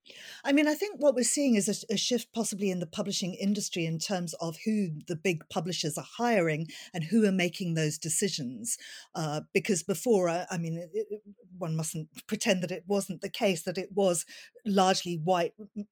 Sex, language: female, English